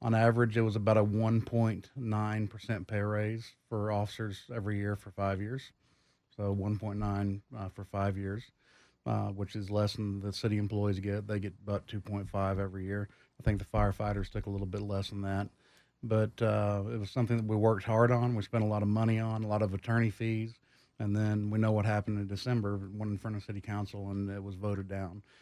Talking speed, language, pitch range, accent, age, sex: 210 wpm, English, 100-115 Hz, American, 30-49, male